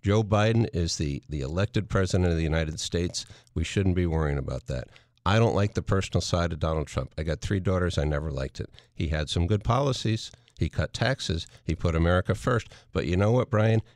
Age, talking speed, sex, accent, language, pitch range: 50-69, 220 wpm, male, American, English, 90-110 Hz